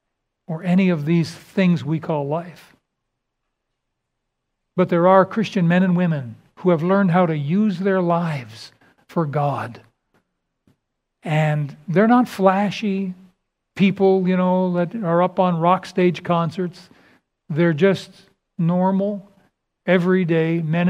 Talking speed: 125 wpm